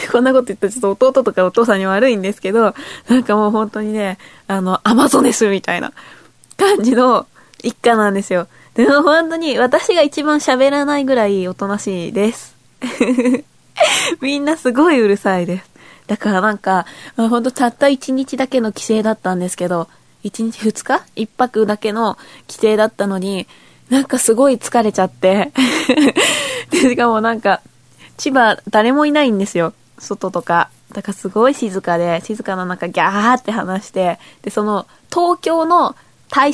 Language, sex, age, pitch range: Japanese, female, 20-39, 195-265 Hz